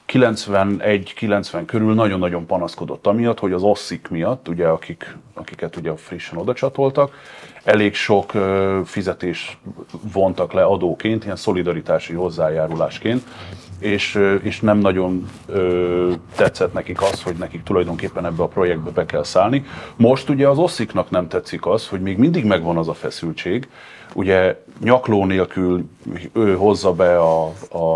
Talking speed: 140 wpm